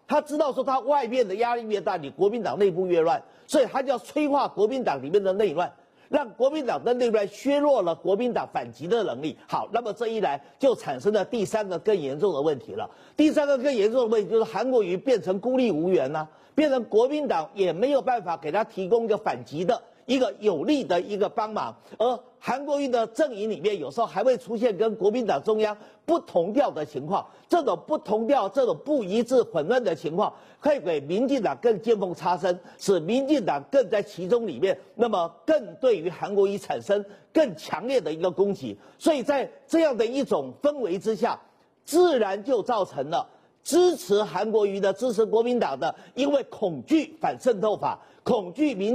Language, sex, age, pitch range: Chinese, male, 50-69, 210-290 Hz